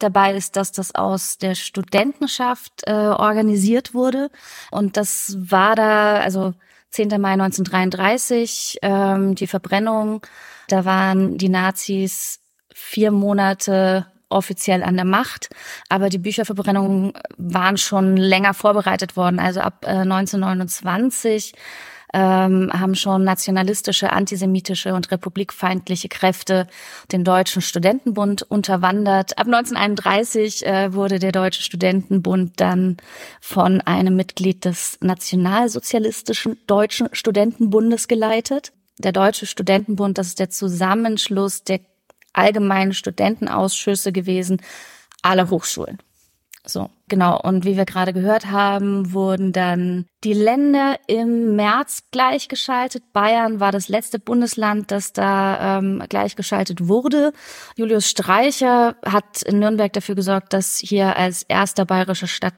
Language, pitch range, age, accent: German, 185-215 Hz, 20-39, German